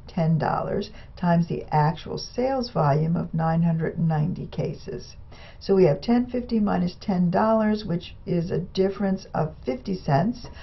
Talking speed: 125 wpm